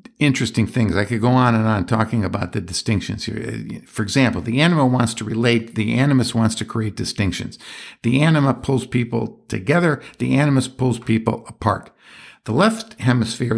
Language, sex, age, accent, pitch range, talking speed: English, male, 60-79, American, 110-135 Hz, 170 wpm